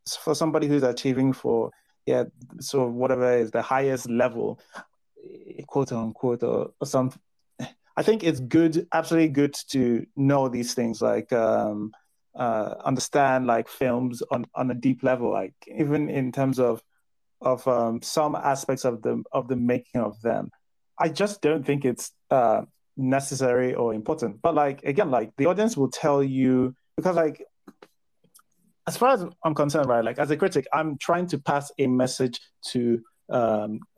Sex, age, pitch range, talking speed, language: male, 20-39, 125-165 Hz, 165 wpm, English